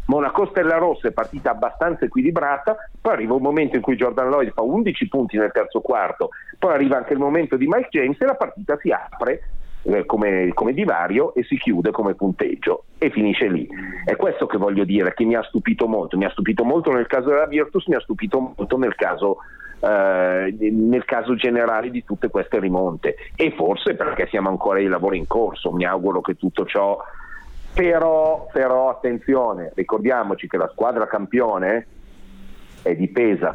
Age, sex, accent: 40-59, male, native